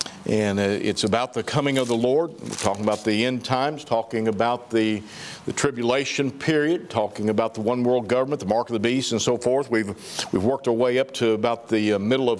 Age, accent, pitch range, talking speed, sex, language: 50-69, American, 120-150 Hz, 220 wpm, male, English